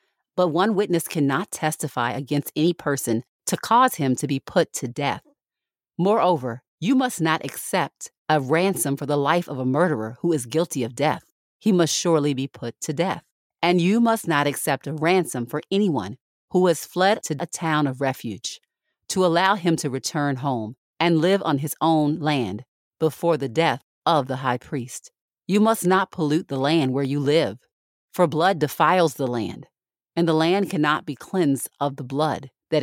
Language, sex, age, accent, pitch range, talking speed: English, female, 40-59, American, 135-170 Hz, 185 wpm